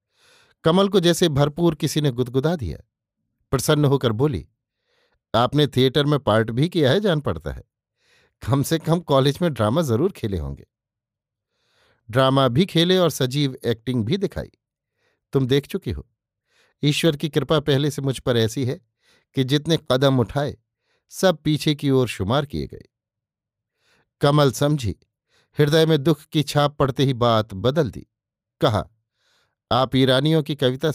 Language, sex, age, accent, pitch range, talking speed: Hindi, male, 50-69, native, 120-155 Hz, 155 wpm